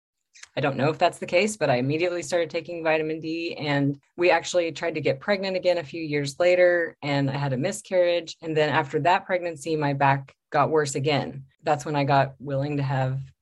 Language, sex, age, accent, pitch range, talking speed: English, female, 30-49, American, 140-170 Hz, 215 wpm